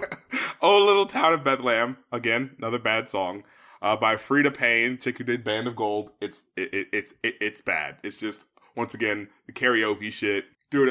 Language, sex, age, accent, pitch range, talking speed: English, male, 20-39, American, 135-210 Hz, 175 wpm